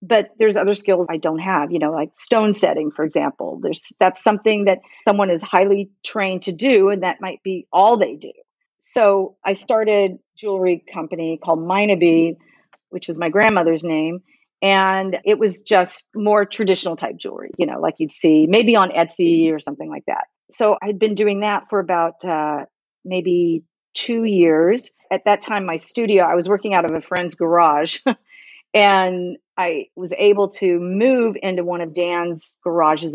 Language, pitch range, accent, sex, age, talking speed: English, 170-205 Hz, American, female, 40-59, 180 wpm